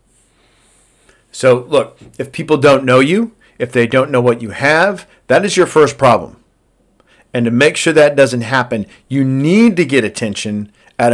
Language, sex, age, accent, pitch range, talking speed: English, male, 50-69, American, 115-150 Hz, 170 wpm